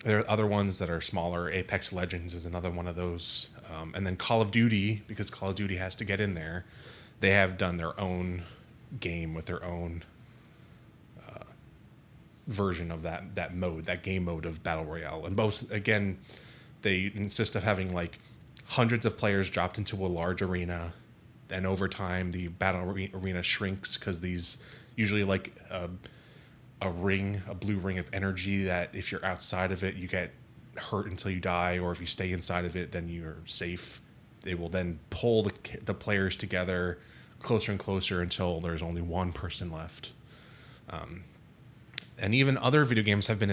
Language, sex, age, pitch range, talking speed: English, male, 20-39, 90-110 Hz, 185 wpm